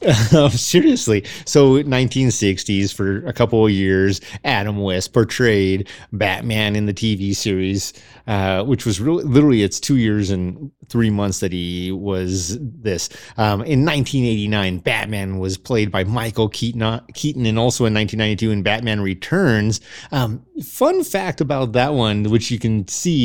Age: 30-49